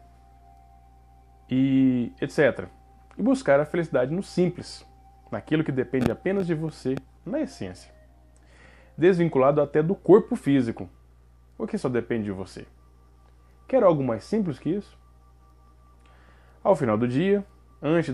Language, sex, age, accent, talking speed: Portuguese, male, 20-39, Brazilian, 125 wpm